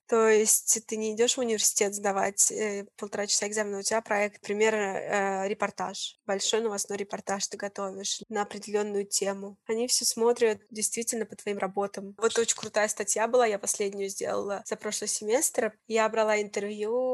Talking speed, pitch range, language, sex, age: 165 wpm, 205-230 Hz, Russian, female, 20-39